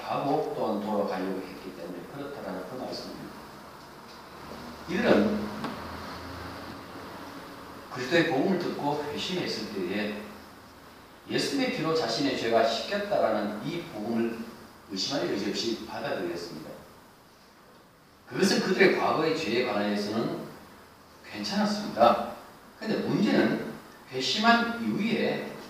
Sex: male